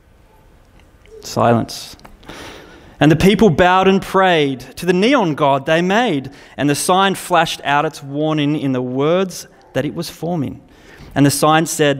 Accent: Australian